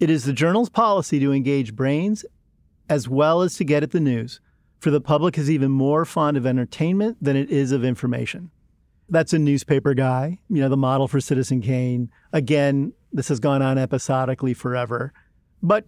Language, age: English, 40-59